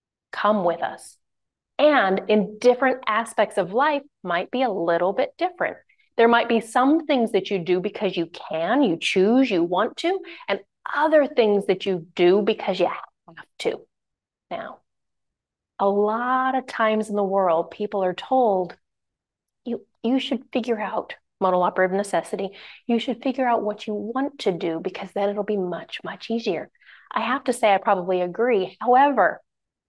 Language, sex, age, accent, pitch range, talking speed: English, female, 30-49, American, 185-255 Hz, 165 wpm